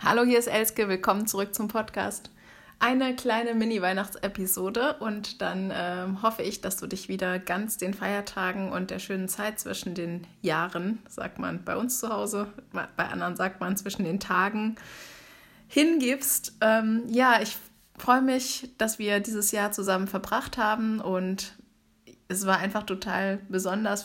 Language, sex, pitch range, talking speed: German, female, 185-220 Hz, 155 wpm